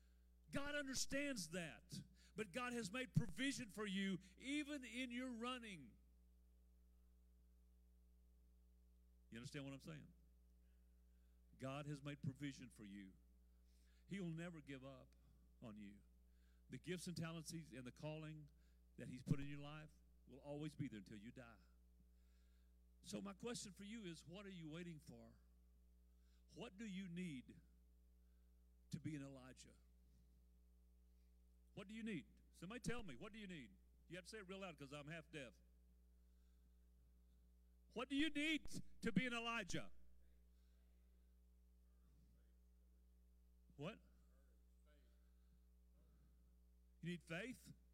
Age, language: 50-69, English